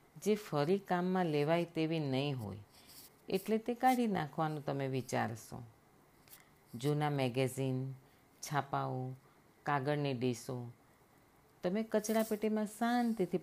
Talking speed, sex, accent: 95 wpm, female, native